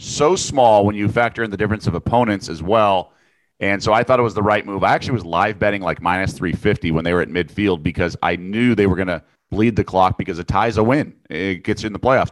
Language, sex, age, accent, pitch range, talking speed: English, male, 30-49, American, 90-115 Hz, 270 wpm